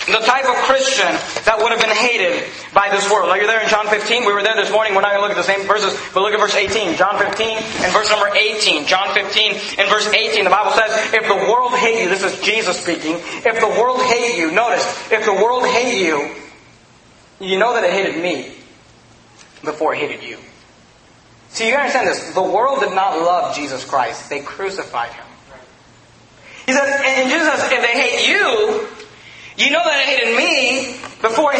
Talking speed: 215 wpm